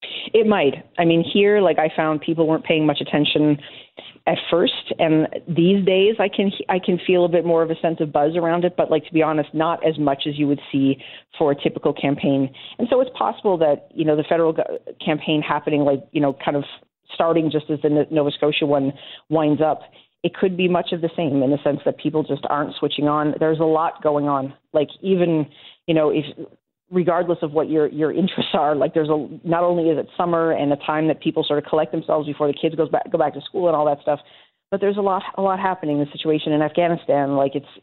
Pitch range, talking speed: 150-165 Hz, 240 wpm